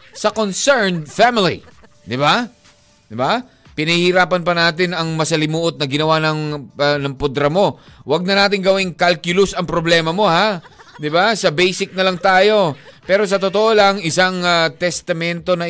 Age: 20-39